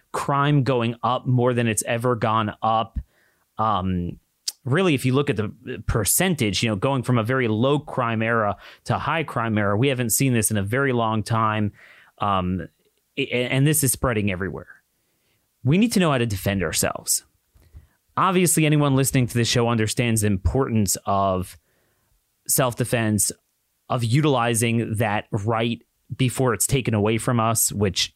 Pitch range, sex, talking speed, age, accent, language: 110-145 Hz, male, 160 wpm, 30-49, American, English